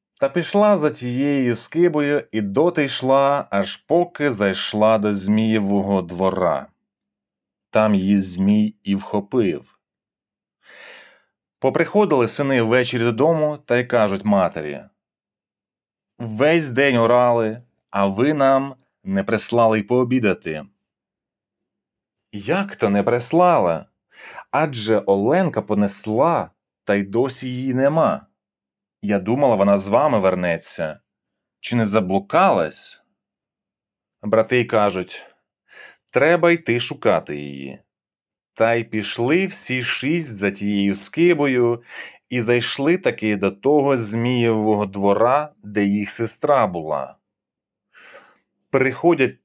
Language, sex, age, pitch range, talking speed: Ukrainian, male, 30-49, 100-140 Hz, 100 wpm